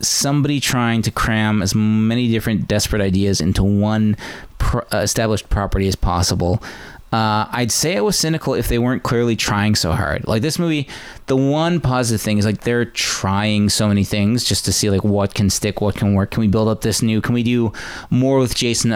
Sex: male